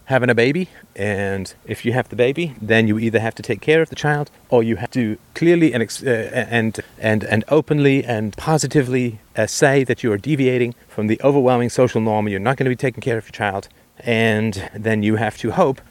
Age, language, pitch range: 40-59, English, 105-130 Hz